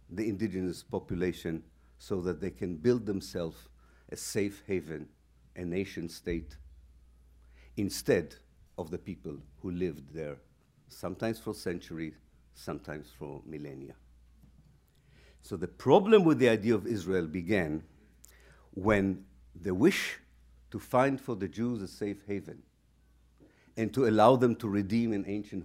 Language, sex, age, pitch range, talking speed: English, male, 50-69, 70-110 Hz, 130 wpm